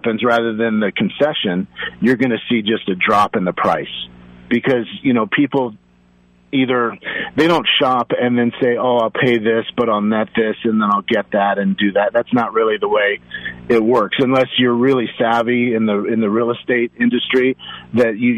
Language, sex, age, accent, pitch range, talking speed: English, male, 40-59, American, 110-135 Hz, 200 wpm